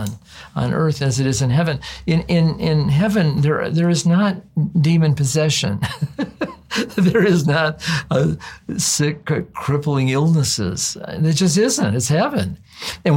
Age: 50-69